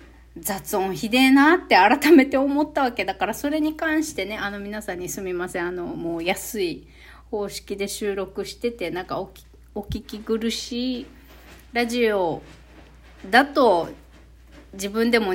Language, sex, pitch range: Japanese, female, 195-295 Hz